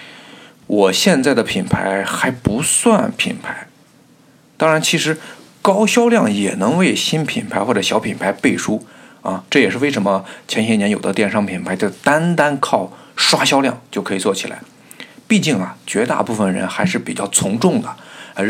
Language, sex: Chinese, male